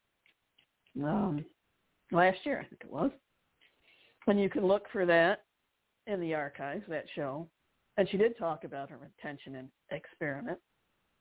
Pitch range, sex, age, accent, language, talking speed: 145-190 Hz, female, 60-79, American, English, 140 wpm